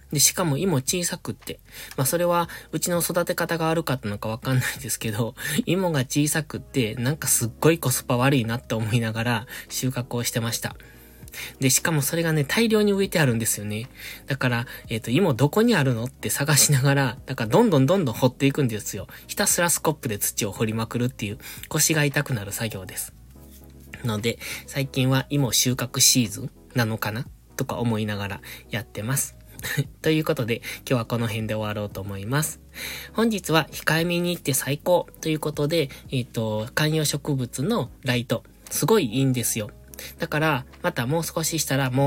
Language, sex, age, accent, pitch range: Japanese, male, 20-39, native, 110-150 Hz